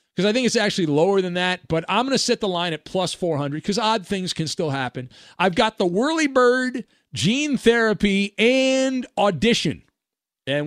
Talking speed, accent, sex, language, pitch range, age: 190 wpm, American, male, English, 145-220 Hz, 40-59